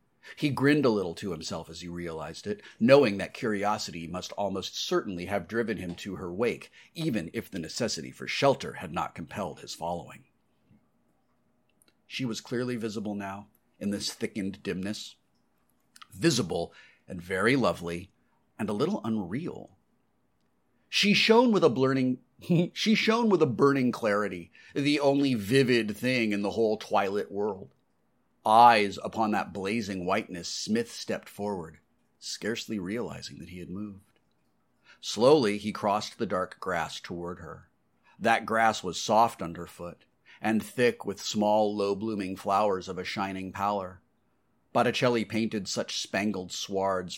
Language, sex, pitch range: English, male, 95-120 Hz